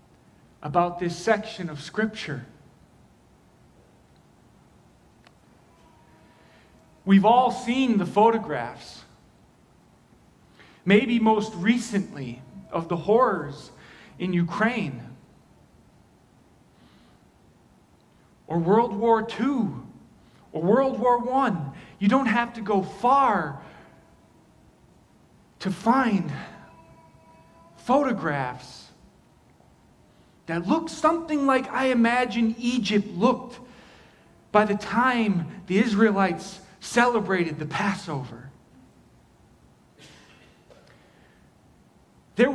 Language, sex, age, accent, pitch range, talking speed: English, male, 40-59, American, 175-240 Hz, 75 wpm